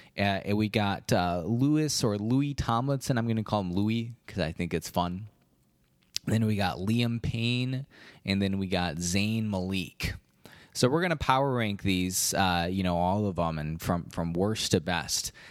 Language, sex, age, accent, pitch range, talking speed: English, male, 20-39, American, 95-125 Hz, 195 wpm